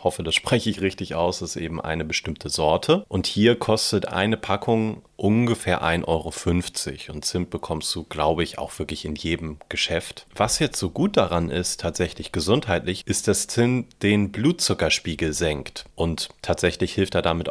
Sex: male